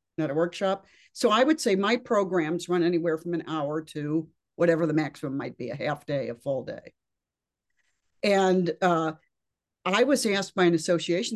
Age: 60-79